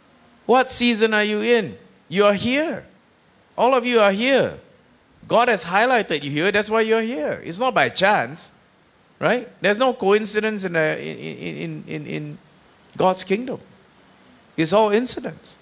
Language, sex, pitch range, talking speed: English, male, 160-220 Hz, 160 wpm